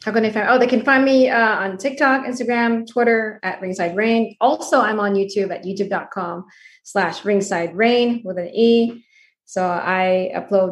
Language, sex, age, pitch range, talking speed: English, female, 20-39, 185-235 Hz, 170 wpm